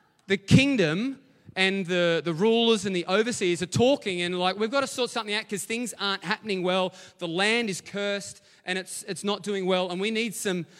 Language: English